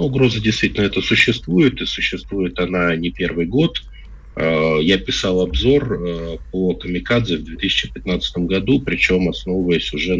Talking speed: 130 wpm